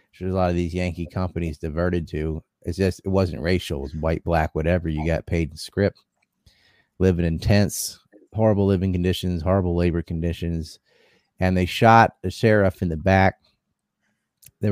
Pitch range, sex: 90-105 Hz, male